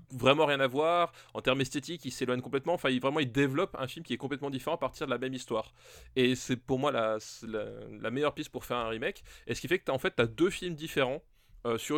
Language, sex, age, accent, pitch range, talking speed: French, male, 20-39, French, 120-150 Hz, 275 wpm